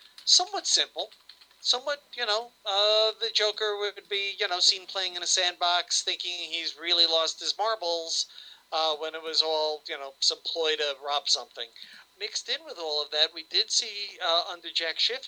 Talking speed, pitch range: 190 wpm, 150-205 Hz